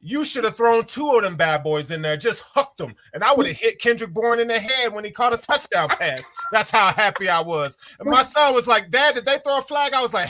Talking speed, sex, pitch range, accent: 285 wpm, male, 165-240 Hz, American